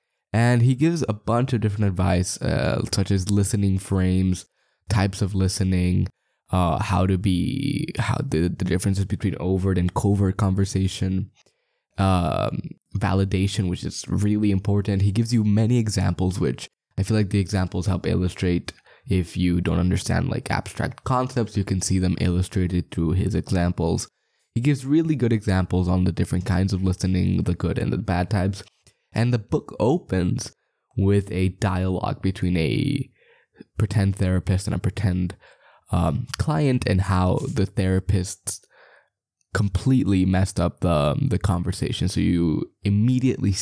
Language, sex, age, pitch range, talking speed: English, male, 10-29, 90-105 Hz, 150 wpm